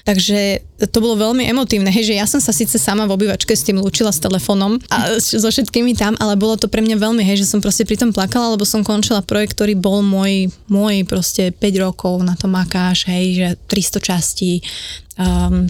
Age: 20-39